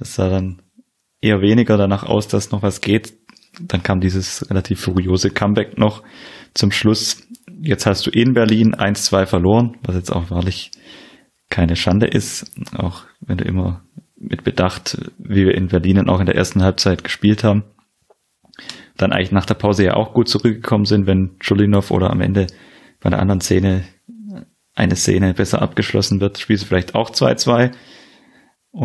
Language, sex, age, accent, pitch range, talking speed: German, male, 20-39, German, 95-110 Hz, 165 wpm